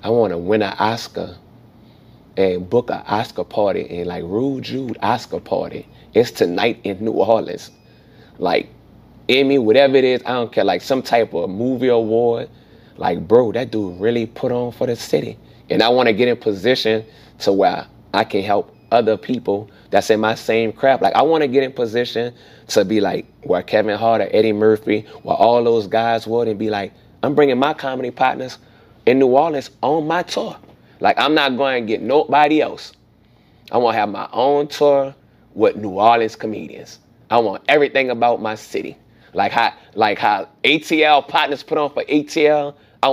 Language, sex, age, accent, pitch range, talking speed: English, male, 30-49, American, 110-140 Hz, 185 wpm